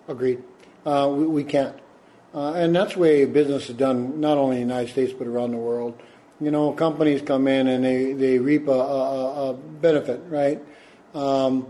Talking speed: 195 wpm